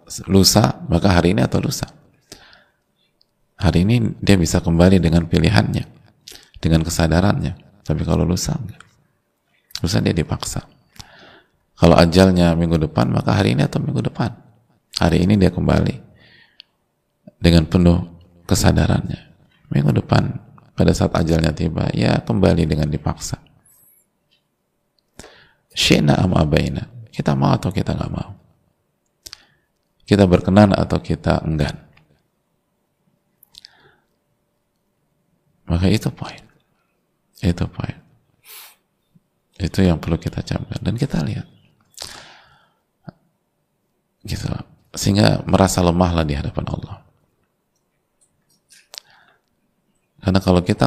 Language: Indonesian